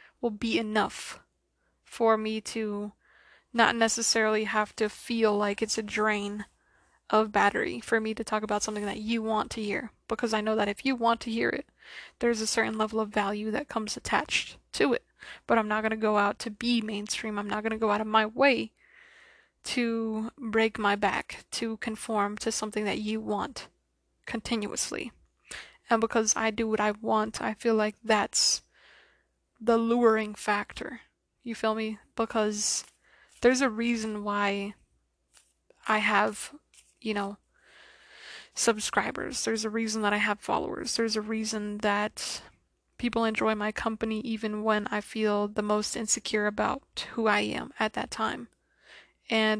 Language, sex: English, female